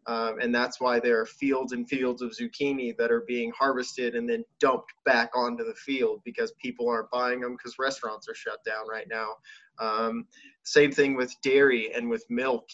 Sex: male